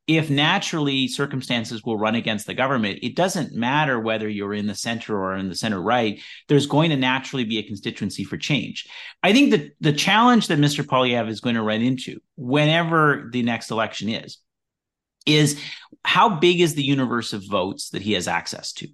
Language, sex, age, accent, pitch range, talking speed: English, male, 30-49, American, 115-160 Hz, 195 wpm